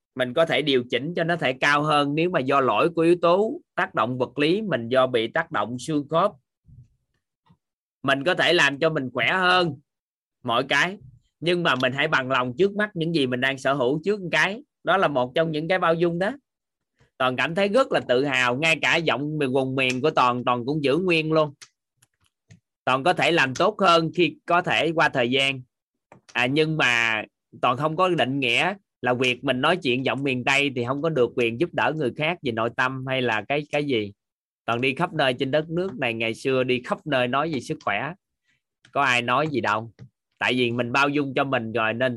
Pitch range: 125-160 Hz